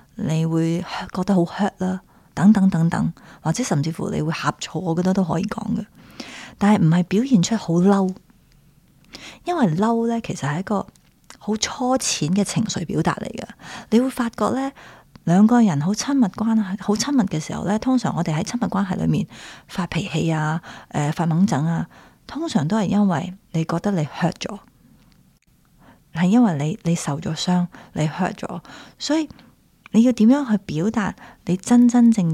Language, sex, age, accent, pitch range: Chinese, female, 30-49, native, 165-215 Hz